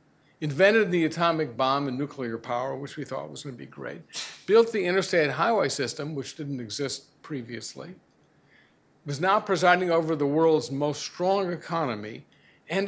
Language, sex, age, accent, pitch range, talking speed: English, male, 60-79, American, 140-195 Hz, 155 wpm